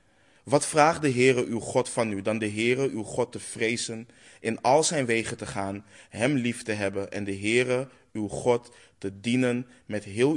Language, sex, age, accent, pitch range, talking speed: Dutch, male, 20-39, Dutch, 100-130 Hz, 195 wpm